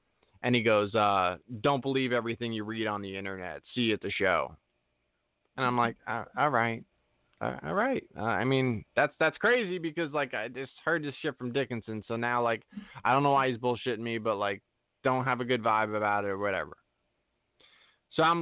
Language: English